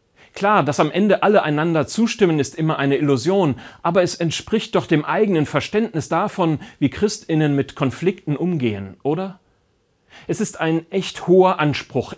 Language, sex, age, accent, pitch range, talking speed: German, male, 40-59, German, 140-190 Hz, 155 wpm